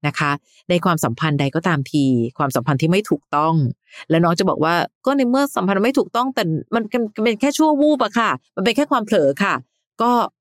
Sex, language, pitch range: female, Thai, 140-195 Hz